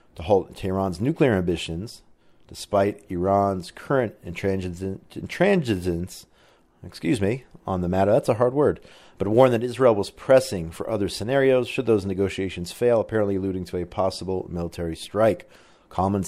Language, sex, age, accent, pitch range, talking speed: English, male, 30-49, American, 95-120 Hz, 140 wpm